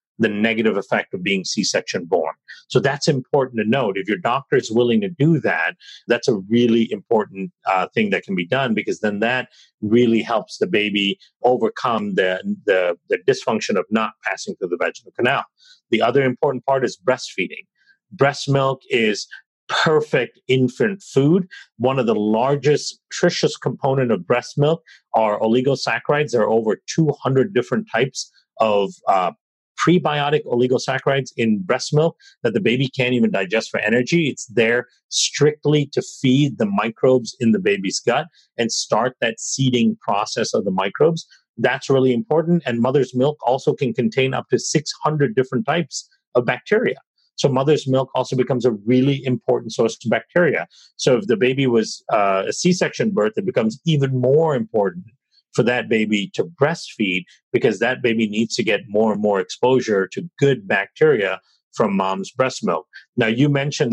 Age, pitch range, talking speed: 40-59, 115-150 Hz, 165 wpm